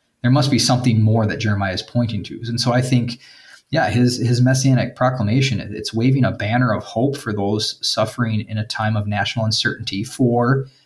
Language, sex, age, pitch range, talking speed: English, male, 30-49, 110-130 Hz, 195 wpm